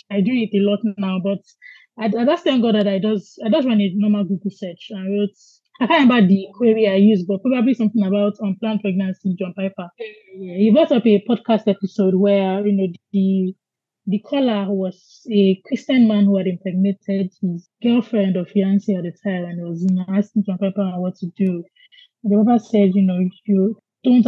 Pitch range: 190-225 Hz